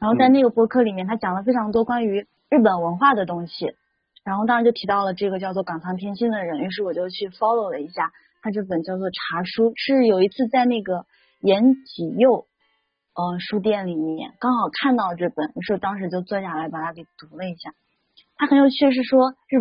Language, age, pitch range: Chinese, 20-39, 185-235 Hz